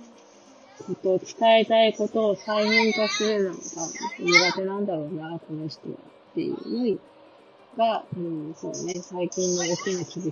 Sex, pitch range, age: female, 170-220 Hz, 30-49